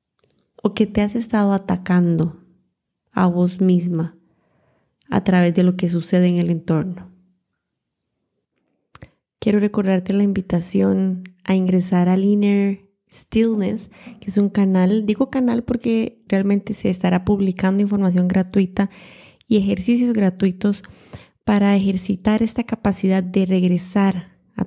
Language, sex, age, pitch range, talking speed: Spanish, female, 20-39, 180-205 Hz, 120 wpm